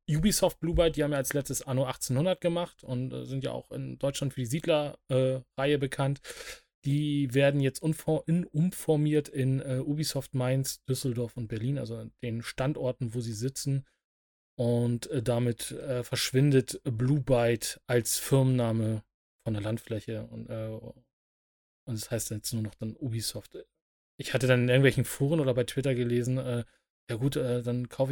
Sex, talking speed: male, 165 wpm